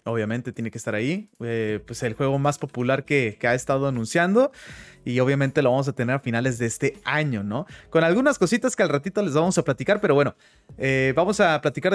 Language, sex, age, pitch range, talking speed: Spanish, male, 30-49, 135-205 Hz, 220 wpm